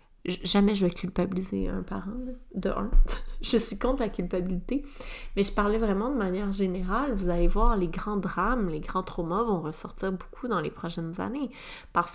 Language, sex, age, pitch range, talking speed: French, female, 30-49, 185-230 Hz, 185 wpm